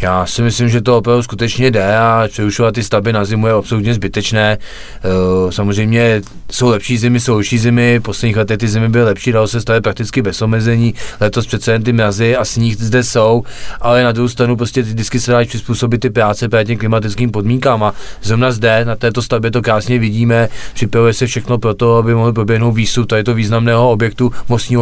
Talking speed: 210 wpm